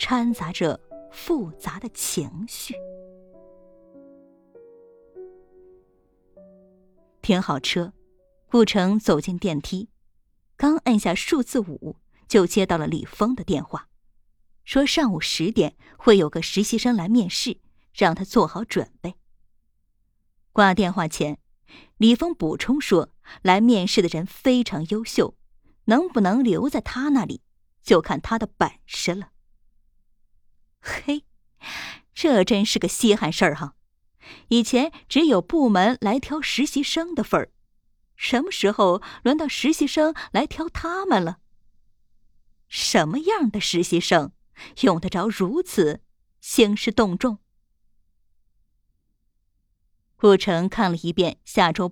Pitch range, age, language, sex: 180-265 Hz, 20-39, Chinese, female